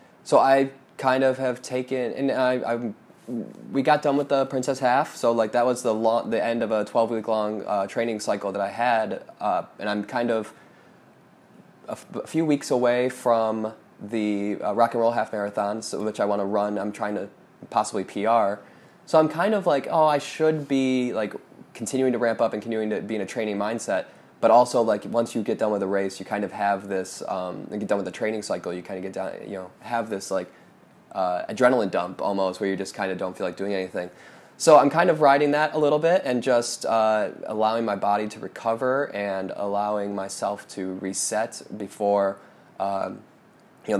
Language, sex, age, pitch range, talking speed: English, male, 20-39, 100-130 Hz, 220 wpm